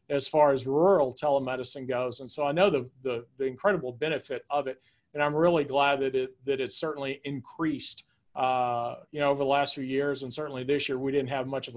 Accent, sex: American, male